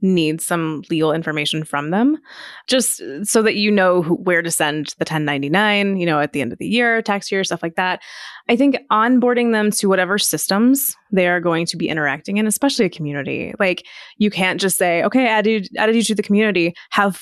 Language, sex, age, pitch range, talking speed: English, female, 20-39, 170-210 Hz, 215 wpm